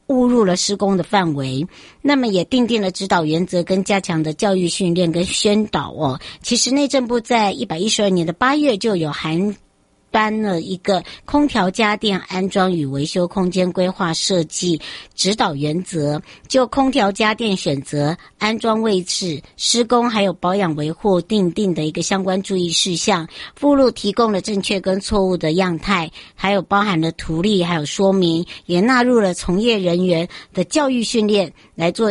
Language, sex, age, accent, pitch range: Chinese, male, 60-79, American, 175-225 Hz